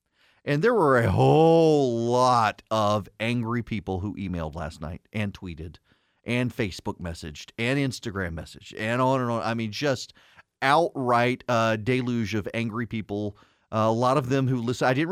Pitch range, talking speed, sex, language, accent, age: 115-150 Hz, 170 wpm, male, English, American, 40-59